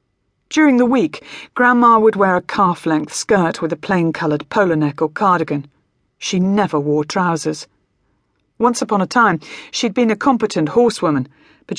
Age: 40-59